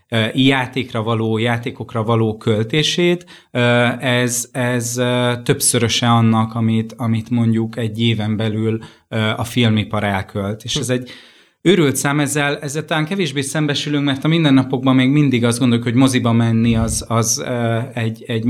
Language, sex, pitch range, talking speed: Hungarian, male, 115-140 Hz, 135 wpm